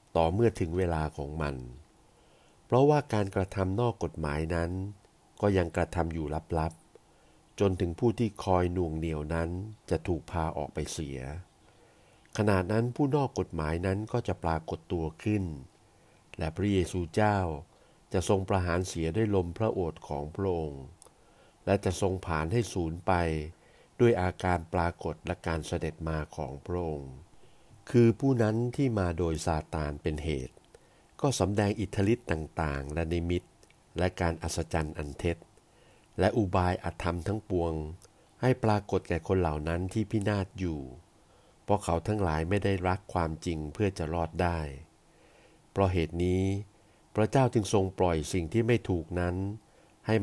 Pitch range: 80-105 Hz